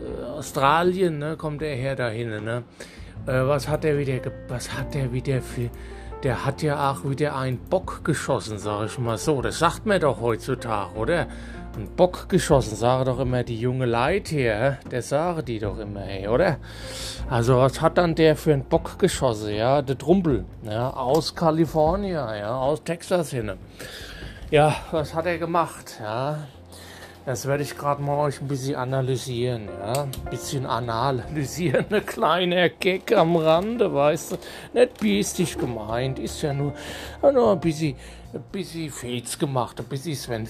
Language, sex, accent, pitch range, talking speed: German, male, German, 115-155 Hz, 165 wpm